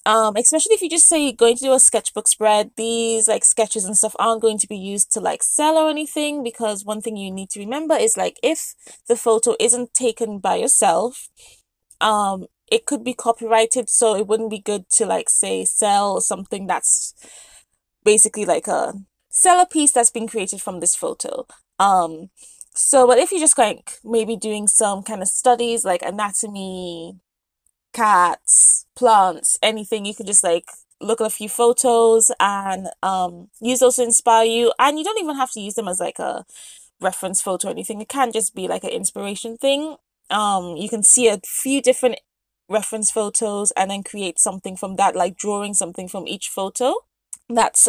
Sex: female